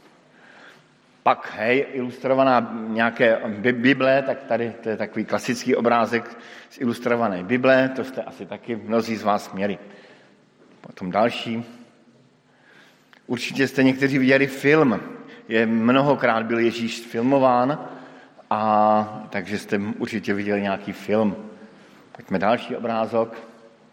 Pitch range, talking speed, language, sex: 110-130 Hz, 115 wpm, Slovak, male